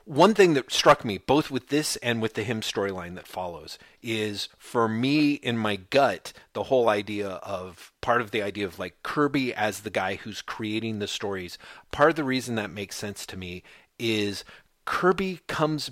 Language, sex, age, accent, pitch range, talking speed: English, male, 30-49, American, 105-145 Hz, 190 wpm